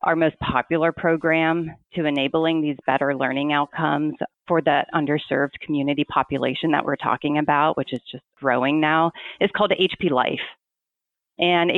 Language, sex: English, female